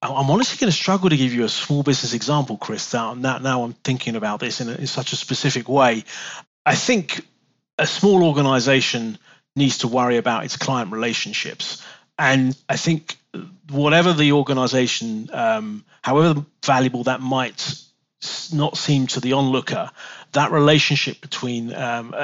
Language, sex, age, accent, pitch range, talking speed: English, male, 40-59, British, 125-150 Hz, 150 wpm